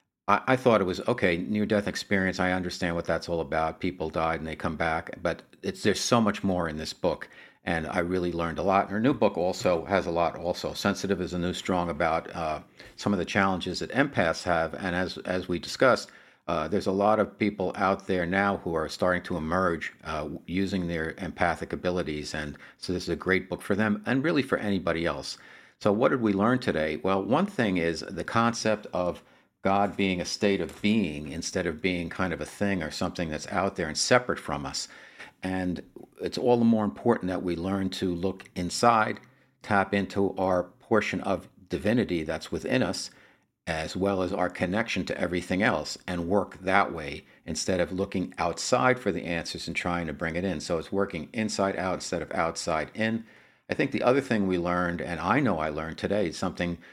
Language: English